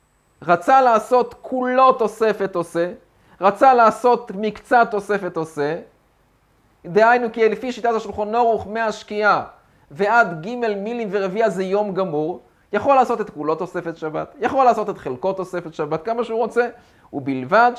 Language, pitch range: Hebrew, 170-220 Hz